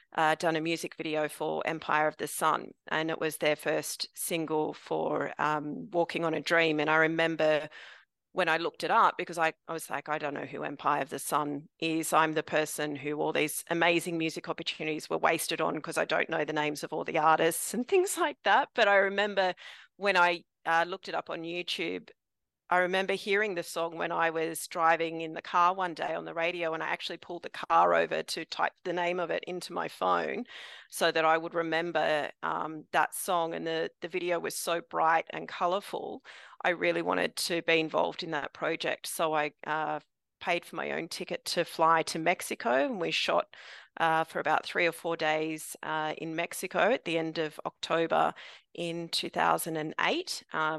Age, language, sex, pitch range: 40-59, English, female, 155-170 Hz